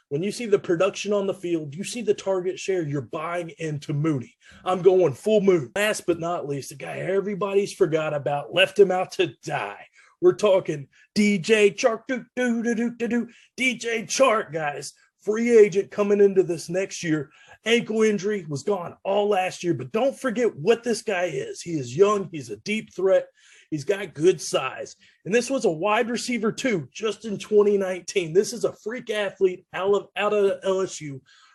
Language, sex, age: English, male, 30-49